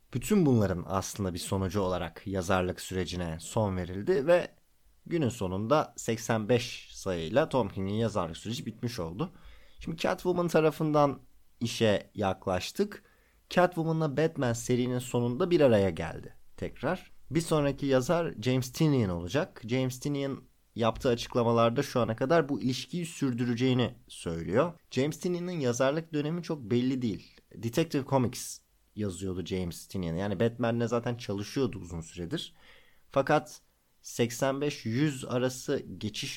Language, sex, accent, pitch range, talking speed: Turkish, male, native, 100-135 Hz, 120 wpm